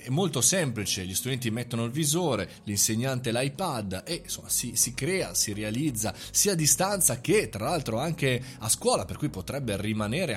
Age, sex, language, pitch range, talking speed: 30-49, male, Italian, 100-130 Hz, 175 wpm